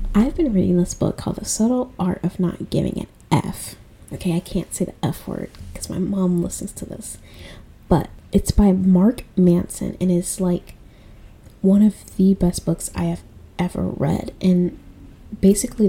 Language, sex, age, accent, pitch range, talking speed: English, female, 10-29, American, 165-195 Hz, 175 wpm